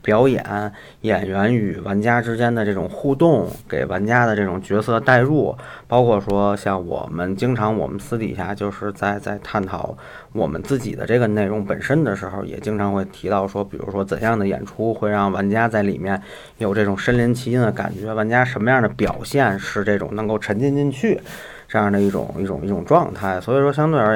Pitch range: 100-120 Hz